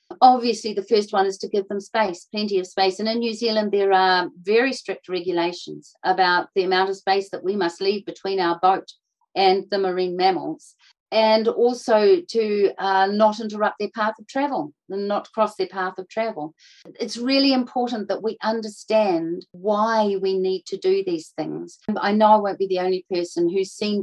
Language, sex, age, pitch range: English, female, 40-59, 190-245 Hz